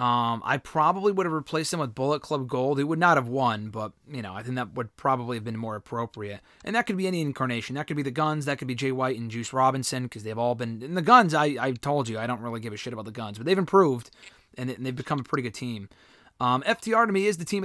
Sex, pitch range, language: male, 125-170 Hz, English